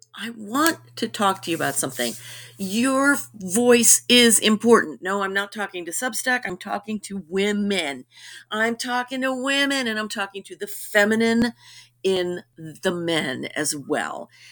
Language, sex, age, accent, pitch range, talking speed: English, female, 50-69, American, 160-230 Hz, 155 wpm